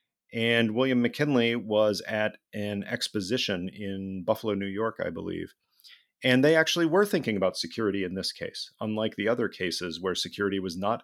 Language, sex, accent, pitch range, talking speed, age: English, male, American, 95-120 Hz, 170 wpm, 40-59